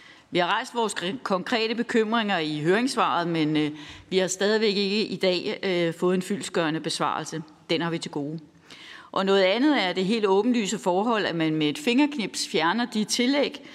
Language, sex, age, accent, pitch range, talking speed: Danish, female, 30-49, native, 170-210 Hz, 175 wpm